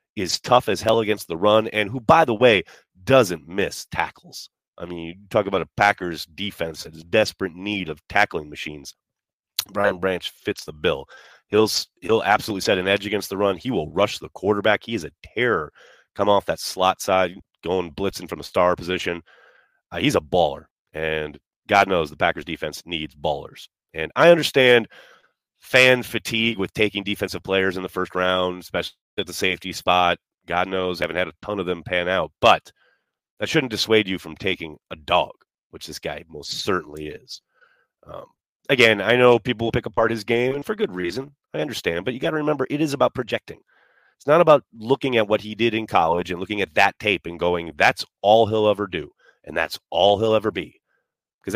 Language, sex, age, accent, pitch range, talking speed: English, male, 30-49, American, 90-115 Hz, 200 wpm